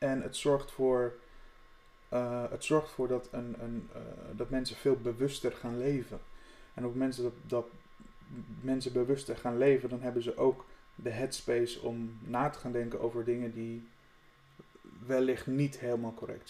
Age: 30-49